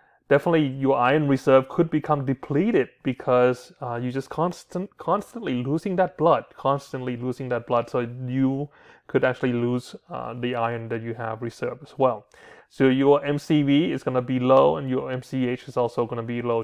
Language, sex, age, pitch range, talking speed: English, male, 30-49, 125-145 Hz, 185 wpm